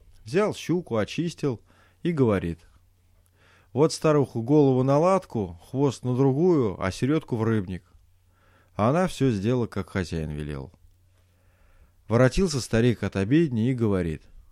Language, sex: Russian, male